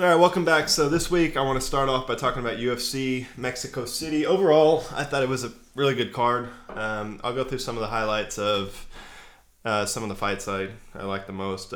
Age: 20-39